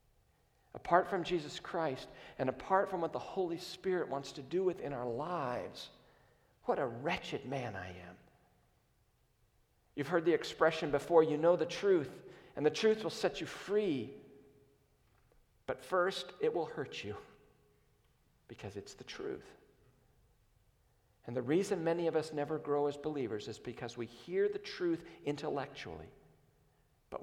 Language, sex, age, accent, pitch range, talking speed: English, male, 50-69, American, 115-160 Hz, 150 wpm